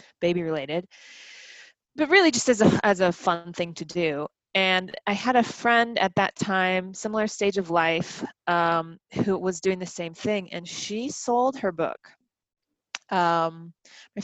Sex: female